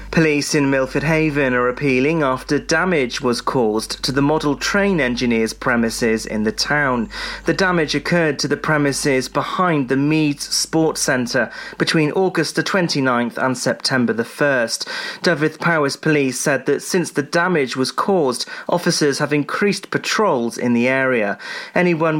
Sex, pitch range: male, 130-165 Hz